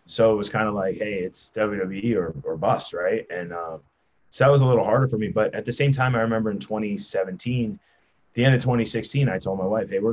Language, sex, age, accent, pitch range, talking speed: English, male, 20-39, American, 95-120 Hz, 255 wpm